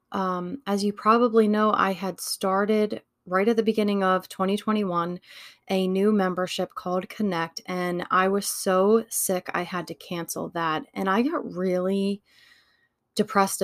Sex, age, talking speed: female, 20-39, 150 wpm